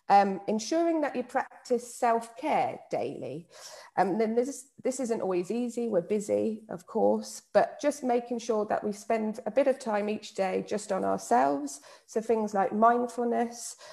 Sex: female